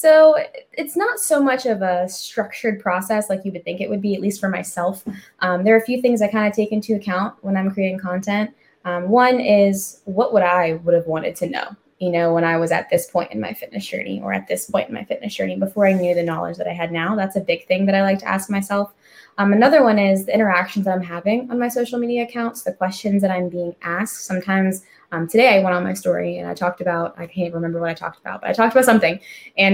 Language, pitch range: English, 175-210 Hz